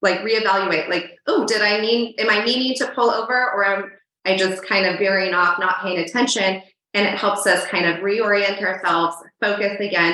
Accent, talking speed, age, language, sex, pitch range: American, 200 wpm, 20-39, English, female, 185-220 Hz